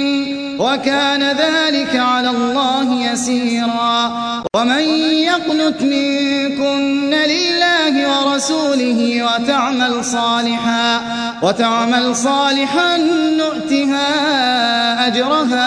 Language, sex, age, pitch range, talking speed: Arabic, male, 30-49, 235-285 Hz, 60 wpm